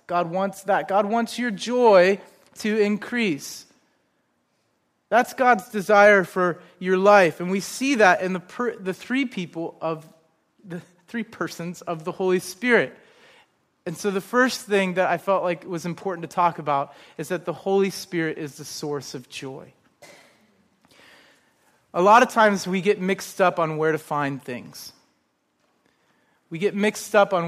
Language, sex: English, male